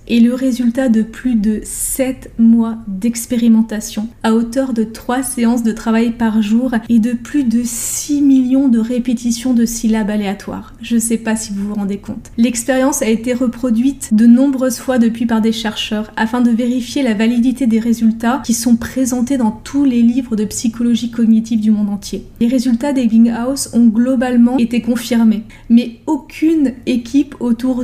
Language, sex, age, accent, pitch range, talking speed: French, female, 20-39, French, 220-245 Hz, 170 wpm